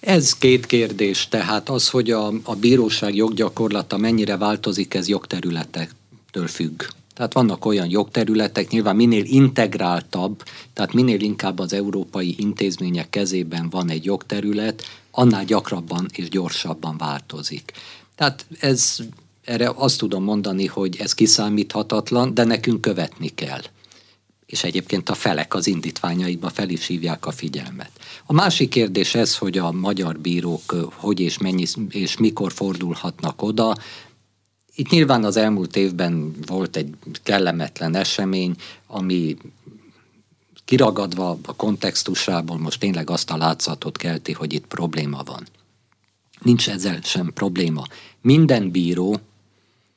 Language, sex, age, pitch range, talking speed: Hungarian, male, 50-69, 90-115 Hz, 125 wpm